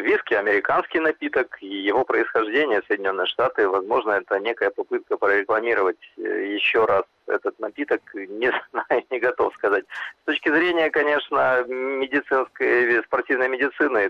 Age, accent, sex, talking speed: 30-49, native, male, 120 wpm